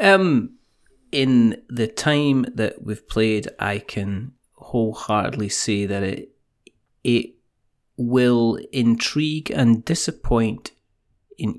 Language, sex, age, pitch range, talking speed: English, male, 30-49, 110-130 Hz, 100 wpm